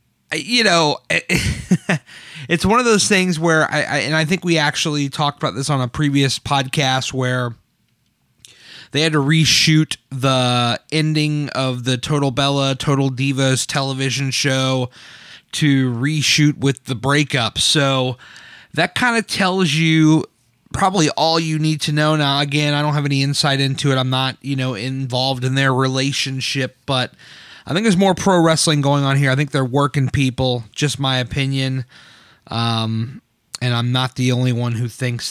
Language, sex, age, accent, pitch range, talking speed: English, male, 30-49, American, 125-150 Hz, 165 wpm